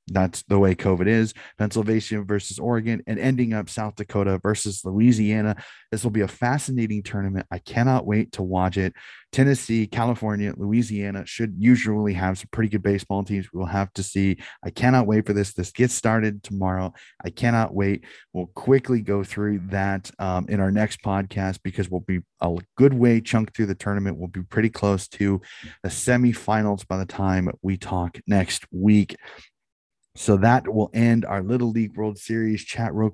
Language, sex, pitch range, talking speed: English, male, 100-120 Hz, 180 wpm